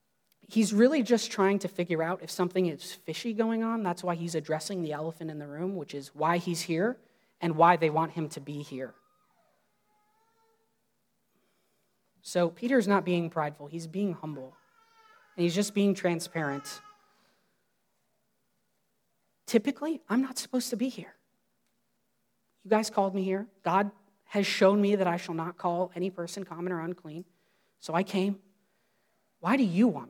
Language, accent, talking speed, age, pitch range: English, American, 160 wpm, 30-49, 160-205 Hz